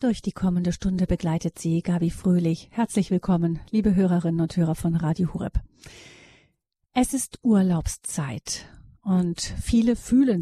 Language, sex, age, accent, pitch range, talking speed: German, female, 40-59, German, 180-215 Hz, 130 wpm